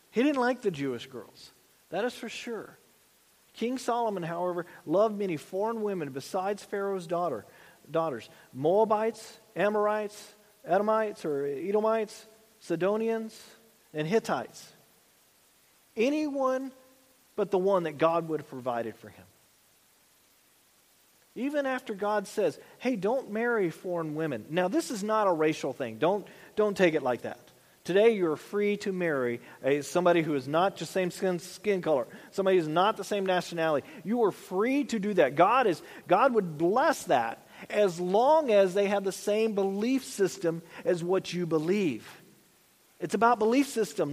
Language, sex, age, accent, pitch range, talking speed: English, male, 40-59, American, 175-225 Hz, 150 wpm